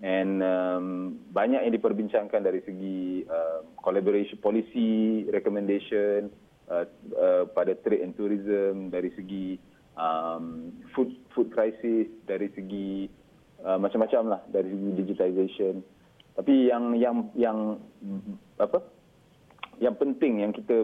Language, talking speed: Malay, 115 wpm